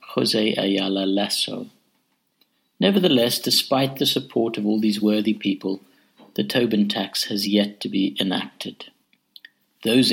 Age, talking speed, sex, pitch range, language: 60-79, 125 wpm, male, 100-135 Hz, English